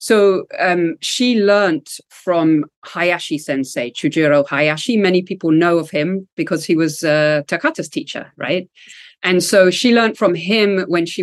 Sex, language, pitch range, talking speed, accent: female, English, 155-200 Hz, 155 wpm, British